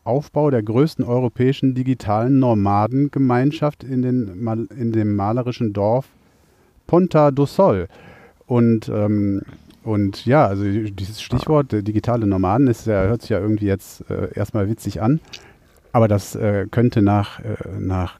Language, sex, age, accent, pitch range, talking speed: German, male, 40-59, German, 105-125 Hz, 145 wpm